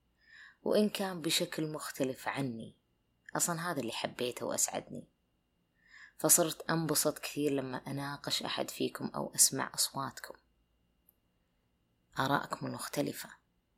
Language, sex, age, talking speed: Arabic, female, 20-39, 95 wpm